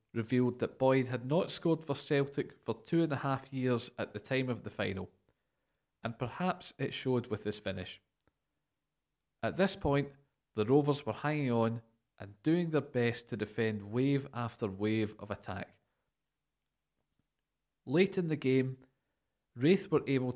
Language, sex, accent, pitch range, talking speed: English, male, British, 110-140 Hz, 155 wpm